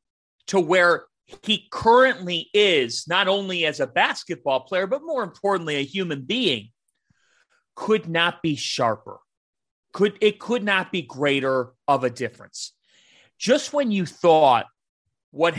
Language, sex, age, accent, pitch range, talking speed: English, male, 30-49, American, 135-195 Hz, 135 wpm